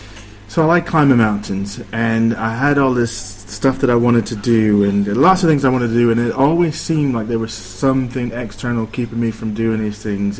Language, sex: English, male